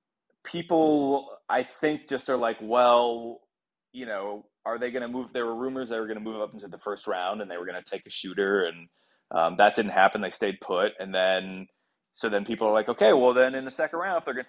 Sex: male